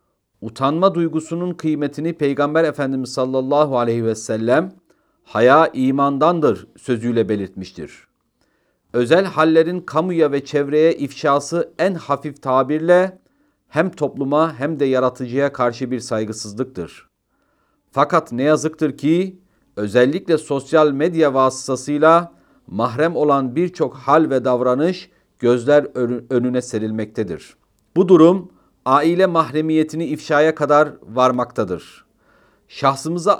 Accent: native